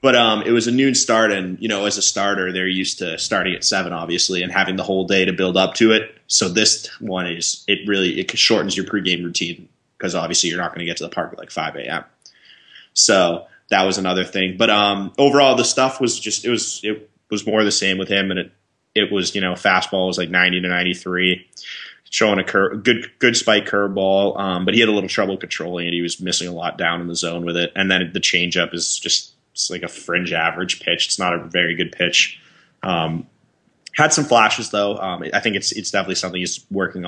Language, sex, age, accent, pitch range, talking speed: English, male, 20-39, American, 90-105 Hz, 240 wpm